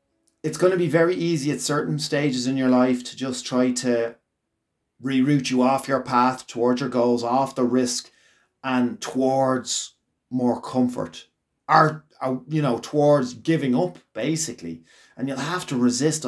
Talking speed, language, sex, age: 160 wpm, English, male, 30-49